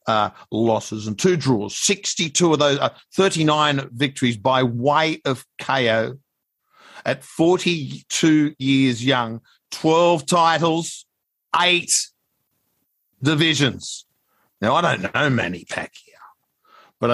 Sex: male